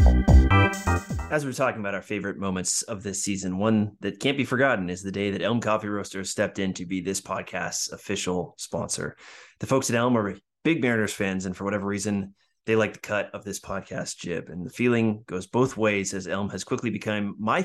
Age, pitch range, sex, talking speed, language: 30-49, 95-120 Hz, male, 210 wpm, English